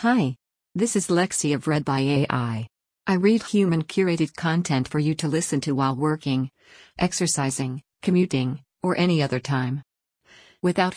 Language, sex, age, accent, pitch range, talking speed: English, female, 50-69, American, 140-165 Hz, 150 wpm